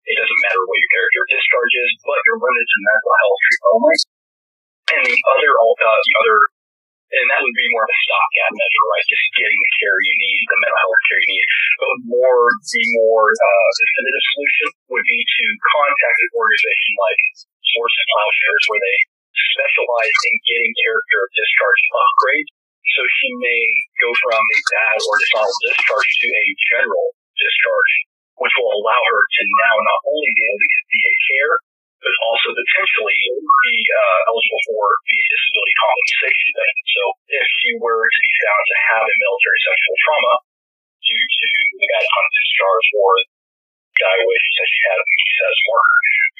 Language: English